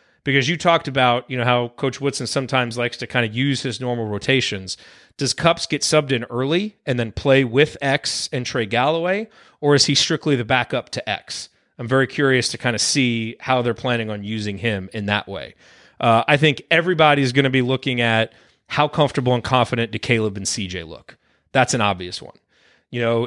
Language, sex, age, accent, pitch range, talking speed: English, male, 30-49, American, 115-140 Hz, 205 wpm